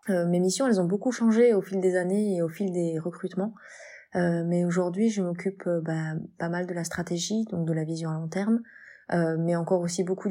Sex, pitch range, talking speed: female, 165-185 Hz, 225 wpm